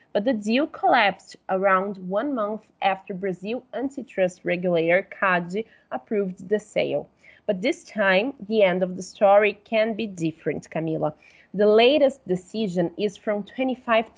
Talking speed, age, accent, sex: 140 wpm, 20-39, Brazilian, female